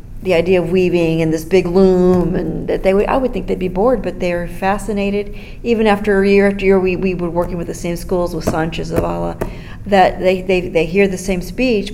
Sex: female